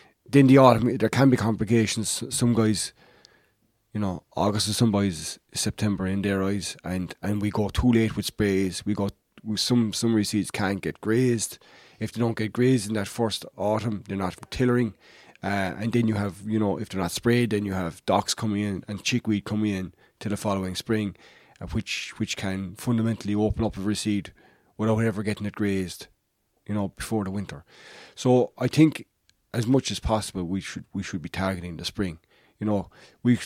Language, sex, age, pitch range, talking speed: English, male, 20-39, 95-110 Hz, 195 wpm